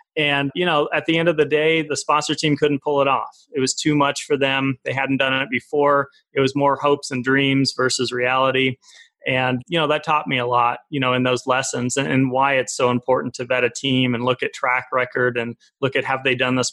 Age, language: 30-49, English